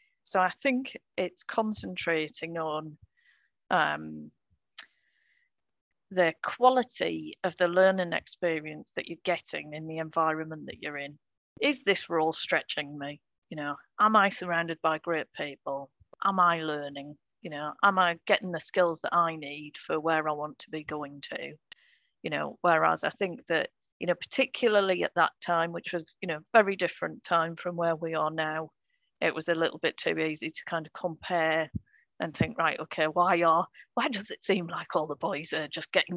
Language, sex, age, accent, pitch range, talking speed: English, female, 40-59, British, 155-185 Hz, 180 wpm